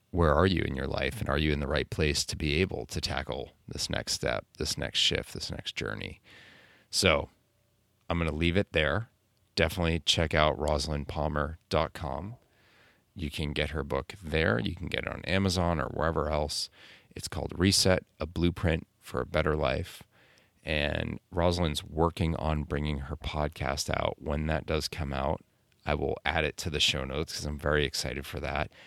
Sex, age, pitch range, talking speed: male, 30-49, 75-90 Hz, 185 wpm